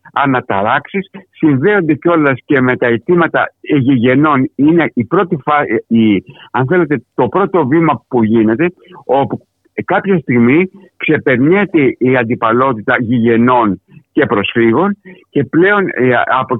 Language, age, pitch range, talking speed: Greek, 60-79, 120-175 Hz, 115 wpm